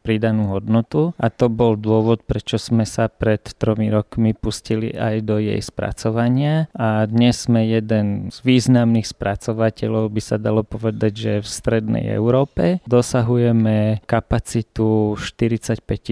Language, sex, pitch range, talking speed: Slovak, male, 105-115 Hz, 130 wpm